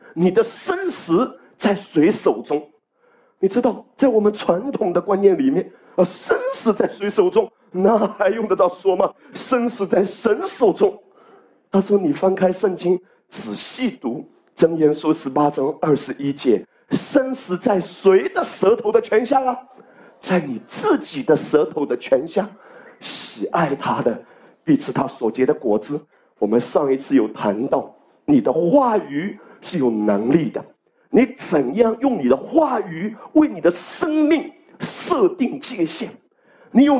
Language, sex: Chinese, male